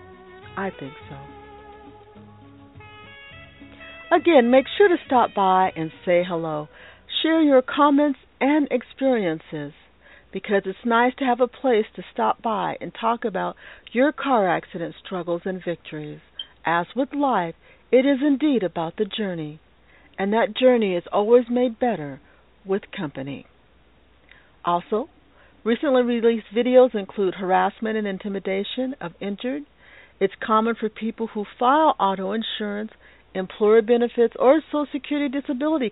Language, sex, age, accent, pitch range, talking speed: English, female, 50-69, American, 175-255 Hz, 130 wpm